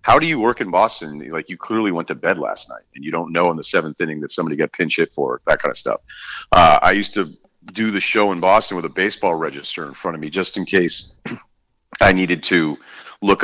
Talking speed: 250 wpm